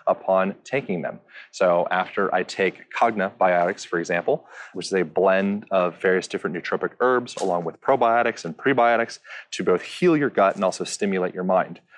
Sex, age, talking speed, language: male, 30-49, 170 wpm, English